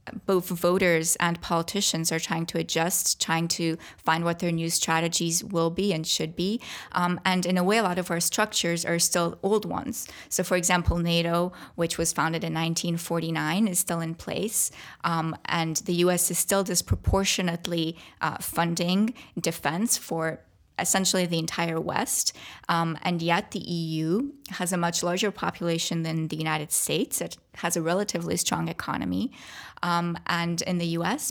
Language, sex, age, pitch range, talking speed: English, female, 20-39, 165-185 Hz, 165 wpm